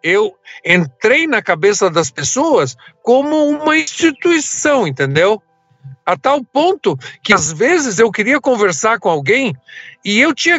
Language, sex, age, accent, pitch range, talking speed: Portuguese, male, 50-69, Brazilian, 190-275 Hz, 135 wpm